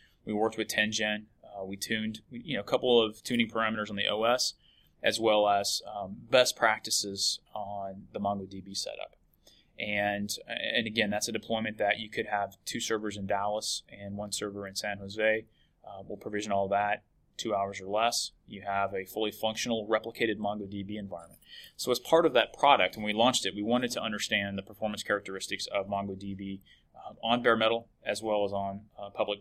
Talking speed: 190 wpm